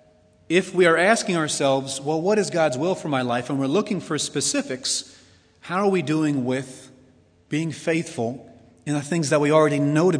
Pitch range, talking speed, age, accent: 120-165 Hz, 195 wpm, 30-49, American